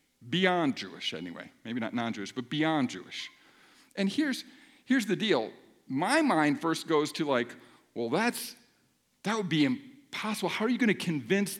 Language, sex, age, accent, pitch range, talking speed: English, male, 50-69, American, 170-235 Hz, 165 wpm